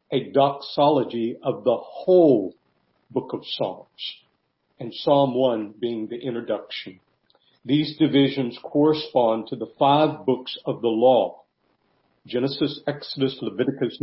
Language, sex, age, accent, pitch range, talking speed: English, male, 50-69, American, 125-150 Hz, 115 wpm